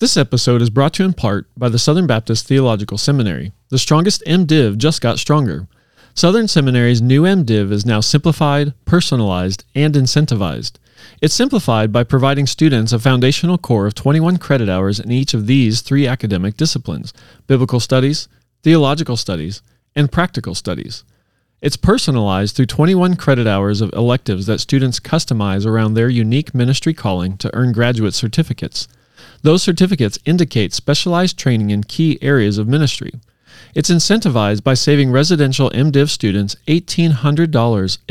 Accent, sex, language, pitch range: American, male, English, 115-155 Hz